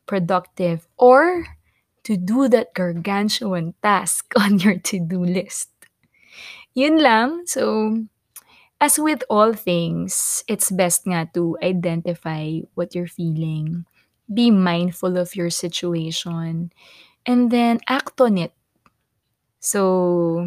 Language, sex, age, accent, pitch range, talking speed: Filipino, female, 20-39, native, 170-225 Hz, 110 wpm